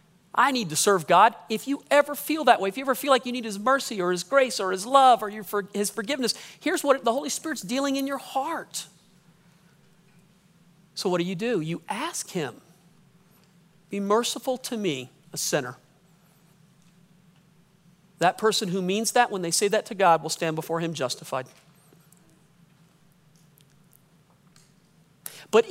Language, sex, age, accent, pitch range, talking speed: English, male, 40-59, American, 170-235 Hz, 165 wpm